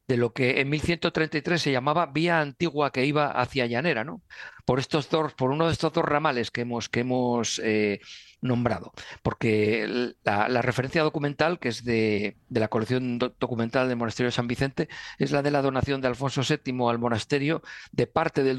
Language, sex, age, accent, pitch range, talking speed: Spanish, male, 50-69, Spanish, 120-150 Hz, 195 wpm